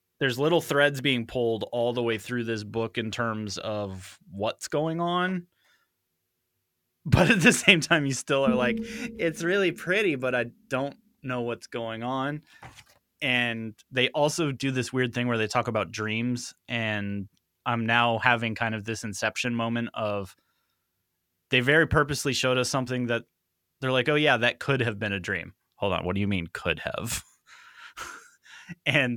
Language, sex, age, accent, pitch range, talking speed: English, male, 20-39, American, 105-135 Hz, 175 wpm